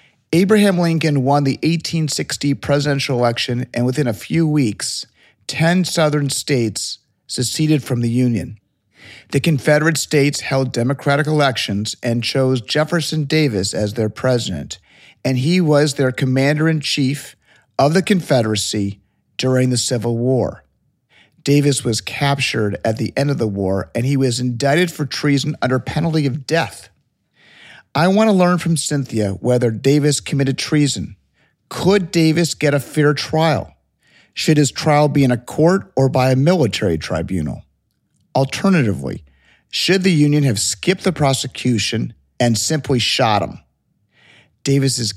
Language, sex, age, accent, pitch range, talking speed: English, male, 40-59, American, 120-155 Hz, 140 wpm